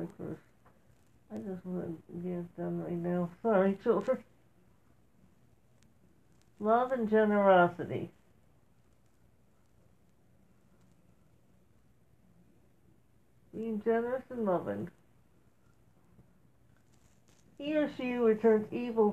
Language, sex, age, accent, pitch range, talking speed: English, female, 60-79, American, 210-235 Hz, 70 wpm